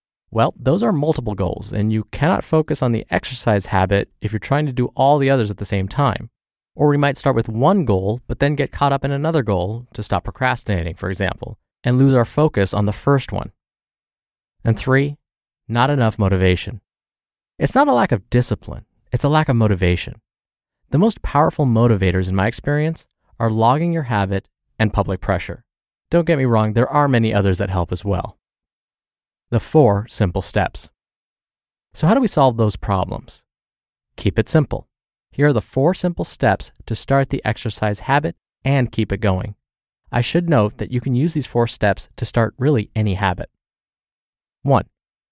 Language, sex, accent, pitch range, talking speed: English, male, American, 100-140 Hz, 185 wpm